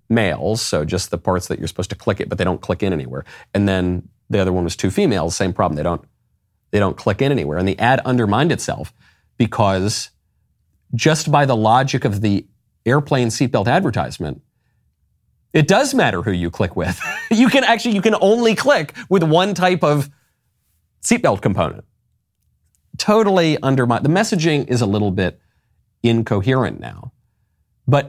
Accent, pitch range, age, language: American, 100-135 Hz, 40-59, English